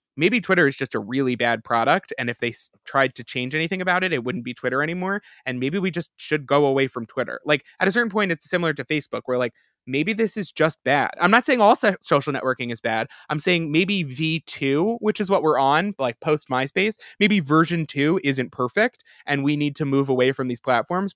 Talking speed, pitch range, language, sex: 235 wpm, 130-165 Hz, English, male